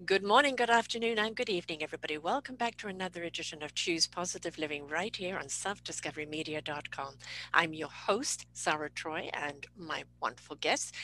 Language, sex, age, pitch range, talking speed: English, female, 50-69, 155-230 Hz, 165 wpm